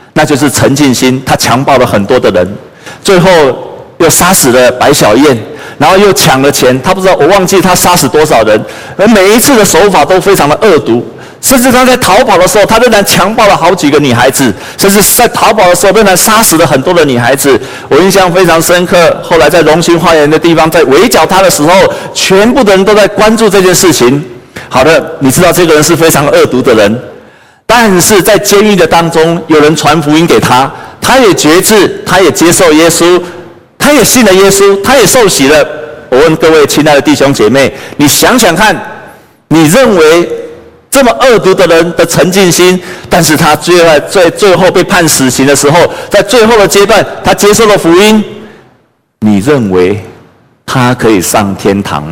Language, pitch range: Chinese, 150-200 Hz